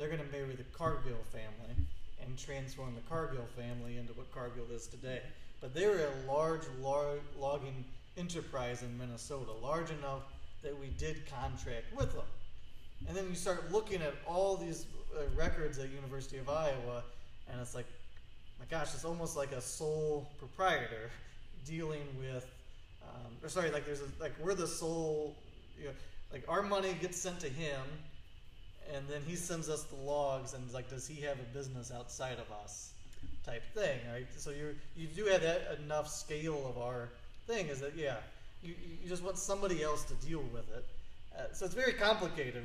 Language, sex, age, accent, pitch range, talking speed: English, male, 30-49, American, 125-160 Hz, 175 wpm